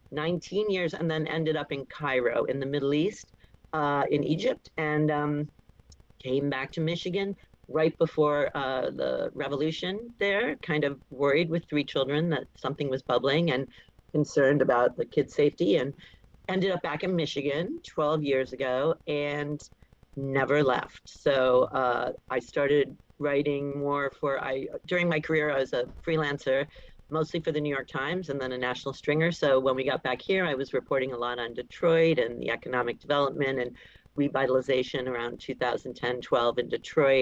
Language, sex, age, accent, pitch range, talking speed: English, female, 40-59, American, 130-160 Hz, 165 wpm